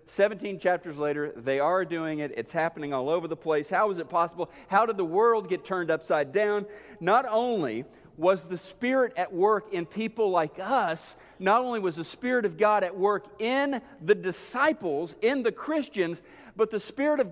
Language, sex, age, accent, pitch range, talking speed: English, male, 50-69, American, 180-250 Hz, 190 wpm